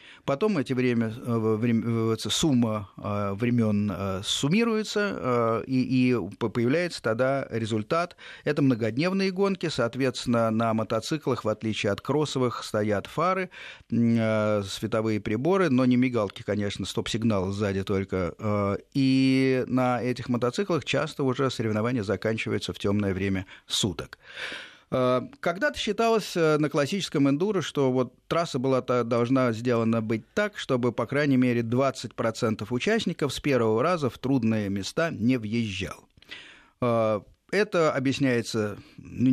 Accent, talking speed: native, 115 wpm